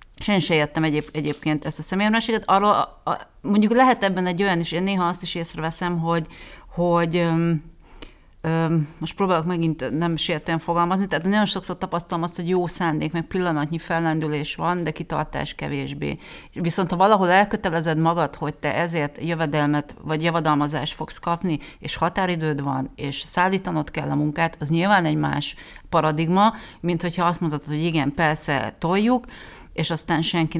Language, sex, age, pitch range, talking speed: Hungarian, female, 30-49, 150-180 Hz, 160 wpm